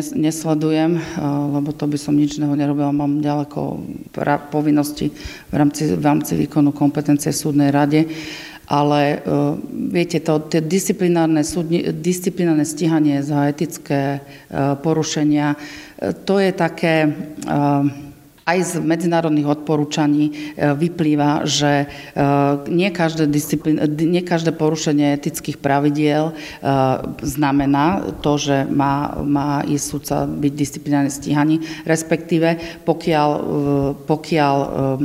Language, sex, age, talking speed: Slovak, female, 40-59, 100 wpm